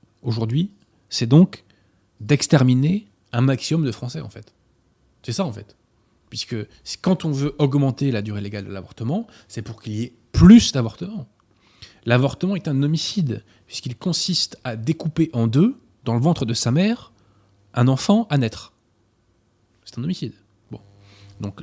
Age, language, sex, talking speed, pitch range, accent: 20-39, French, male, 155 wpm, 105-150 Hz, French